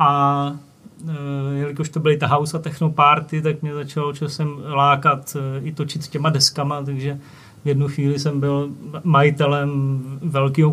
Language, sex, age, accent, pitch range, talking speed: Czech, male, 30-49, native, 145-165 Hz, 145 wpm